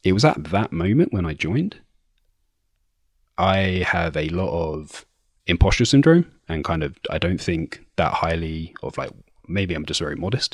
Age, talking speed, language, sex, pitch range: 30-49, 170 wpm, English, male, 80-95 Hz